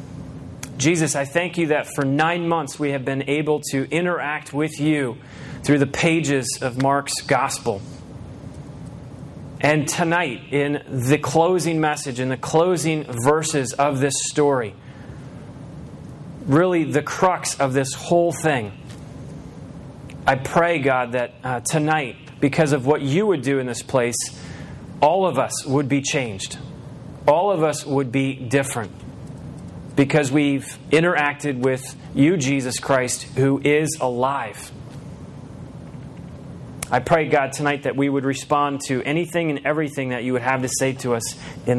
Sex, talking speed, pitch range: male, 145 wpm, 130-155 Hz